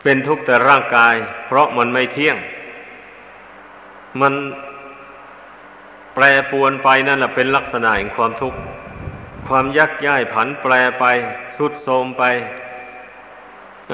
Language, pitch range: Thai, 120-140 Hz